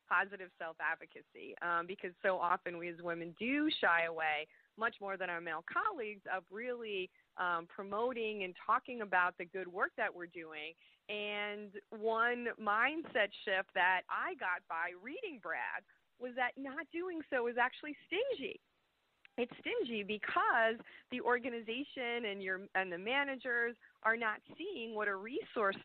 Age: 30-49